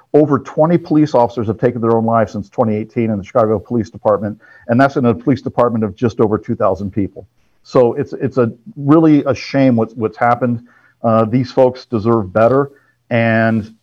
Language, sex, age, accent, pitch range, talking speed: English, male, 50-69, American, 115-140 Hz, 185 wpm